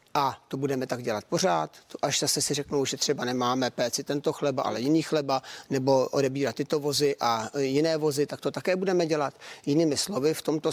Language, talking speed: Czech, 195 wpm